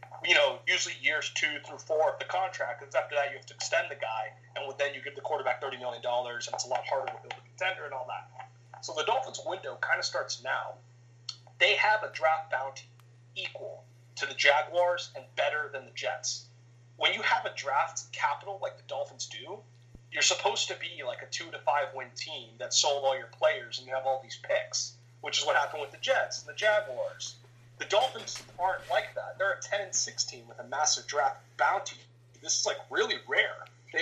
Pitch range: 120-165 Hz